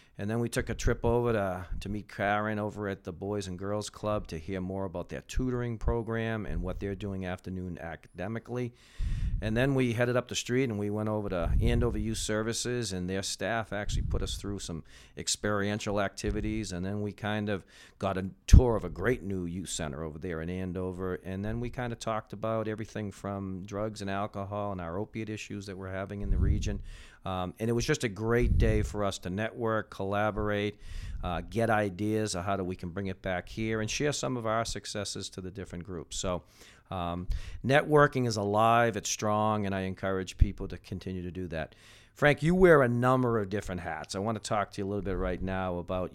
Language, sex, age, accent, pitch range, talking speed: English, male, 50-69, American, 95-110 Hz, 215 wpm